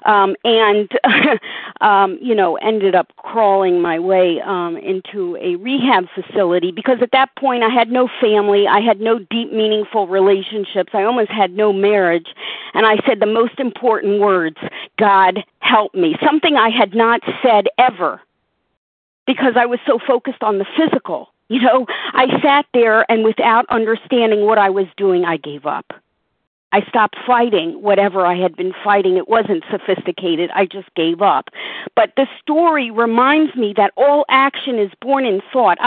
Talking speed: 165 wpm